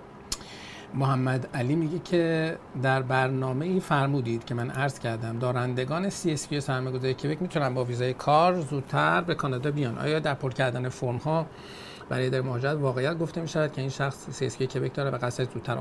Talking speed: 175 wpm